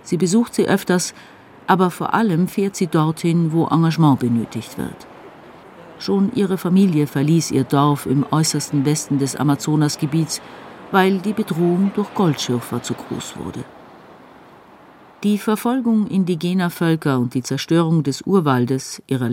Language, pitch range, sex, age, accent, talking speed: German, 145-190 Hz, female, 50-69, German, 135 wpm